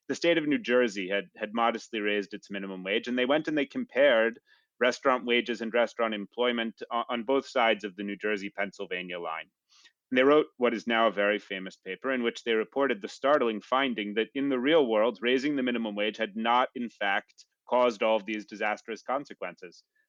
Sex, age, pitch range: male, 30-49, 110-135 Hz